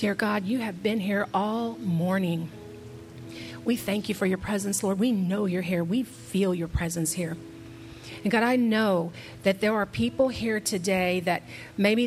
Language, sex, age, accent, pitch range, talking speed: English, female, 40-59, American, 175-230 Hz, 180 wpm